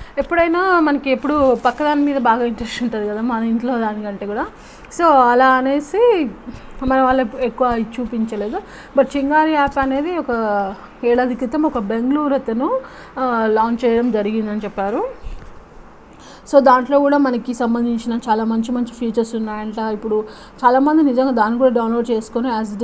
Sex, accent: female, native